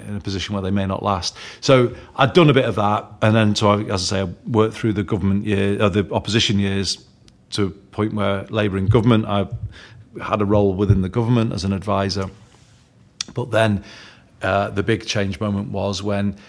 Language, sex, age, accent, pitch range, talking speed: English, male, 40-59, British, 100-115 Hz, 210 wpm